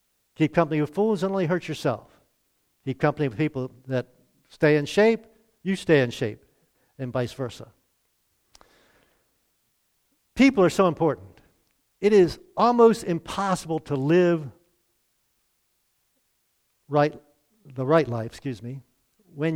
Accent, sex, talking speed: American, male, 125 wpm